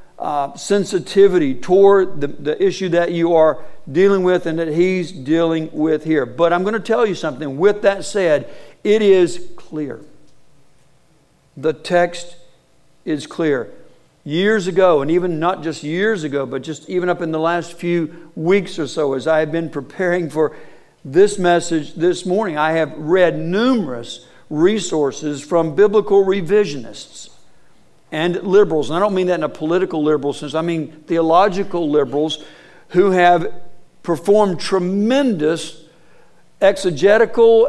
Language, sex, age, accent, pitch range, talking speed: English, male, 60-79, American, 160-195 Hz, 145 wpm